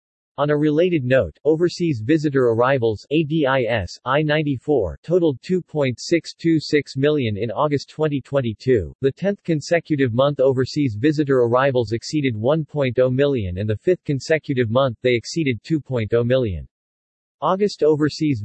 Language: English